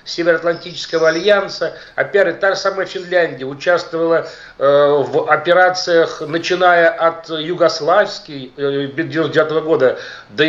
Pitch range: 160-200 Hz